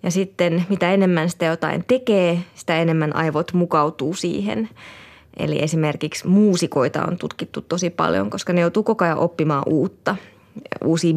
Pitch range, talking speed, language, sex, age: 165-190 Hz, 145 wpm, Finnish, female, 20-39